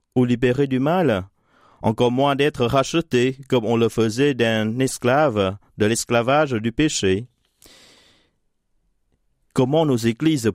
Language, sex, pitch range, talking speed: French, male, 115-145 Hz, 120 wpm